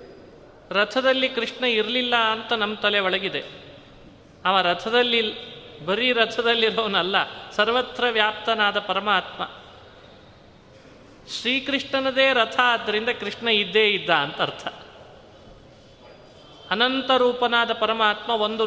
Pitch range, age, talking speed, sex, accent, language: 210-245 Hz, 30-49, 85 wpm, male, native, Kannada